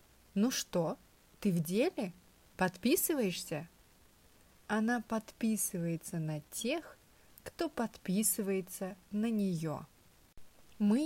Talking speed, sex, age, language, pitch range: 80 wpm, female, 30-49, English, 170-220 Hz